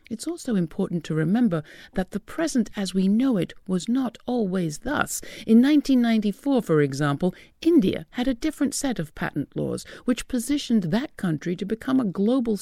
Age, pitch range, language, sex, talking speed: 60-79, 165-235 Hz, English, female, 170 wpm